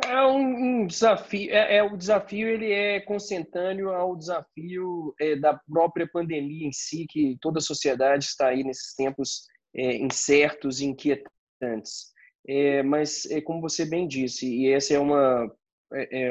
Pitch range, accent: 135-160 Hz, Brazilian